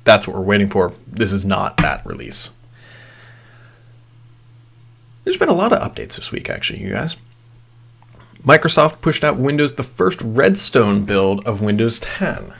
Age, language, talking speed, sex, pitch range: 30-49, English, 150 wpm, male, 105-125 Hz